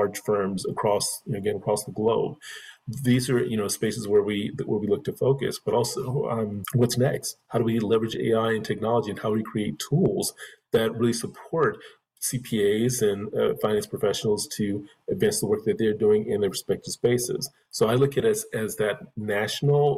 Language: English